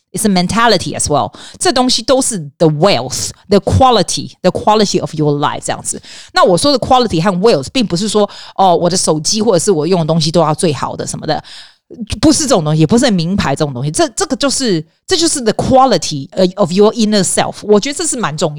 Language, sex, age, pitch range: Chinese, female, 30-49, 155-225 Hz